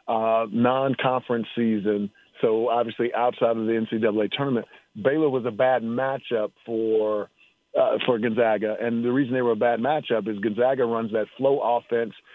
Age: 40-59